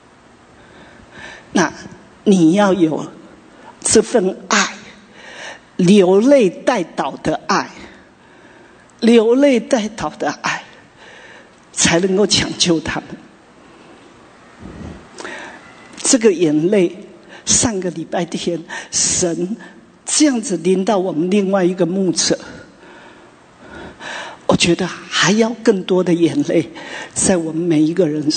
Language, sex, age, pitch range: English, male, 50-69, 170-225 Hz